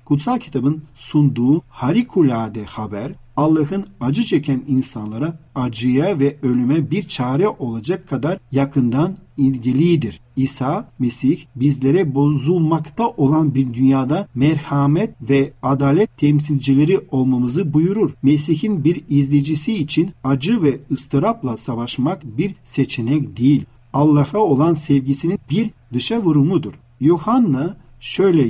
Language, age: Turkish, 50-69